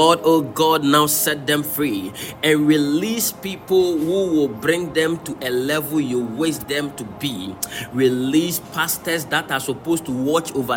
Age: 30-49